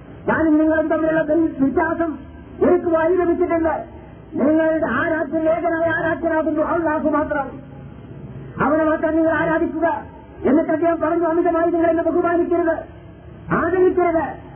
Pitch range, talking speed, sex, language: 315-335 Hz, 90 wpm, male, Malayalam